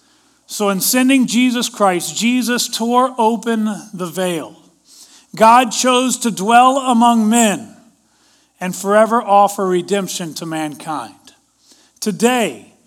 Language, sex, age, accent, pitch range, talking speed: English, male, 40-59, American, 190-250 Hz, 105 wpm